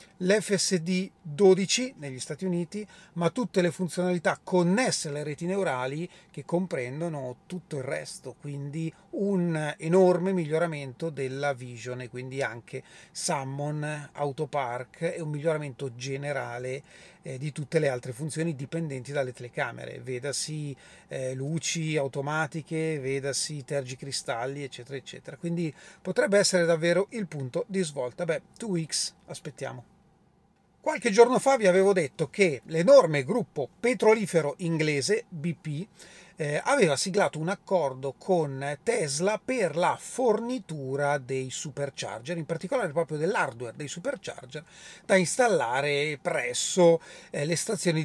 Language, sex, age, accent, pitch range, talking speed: Italian, male, 30-49, native, 140-185 Hz, 120 wpm